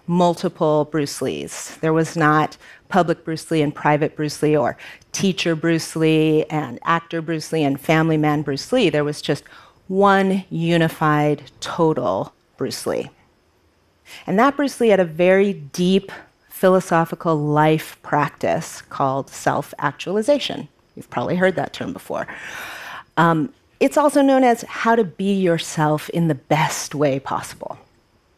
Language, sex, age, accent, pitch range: Korean, female, 40-59, American, 150-190 Hz